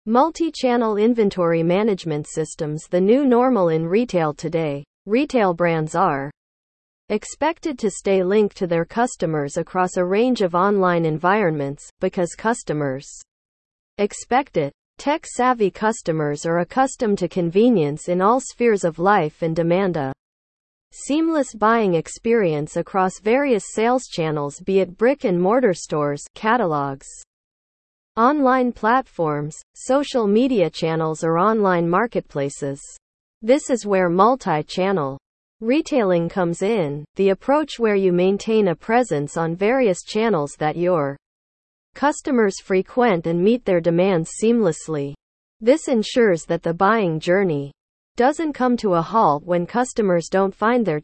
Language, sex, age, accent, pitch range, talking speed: English, female, 40-59, American, 165-230 Hz, 125 wpm